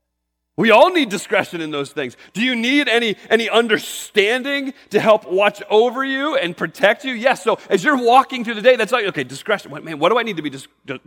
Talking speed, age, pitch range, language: 220 wpm, 30-49, 140-215 Hz, English